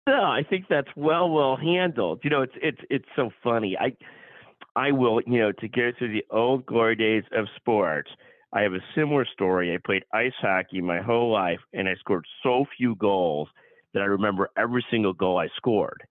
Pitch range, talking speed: 95-120 Hz, 200 wpm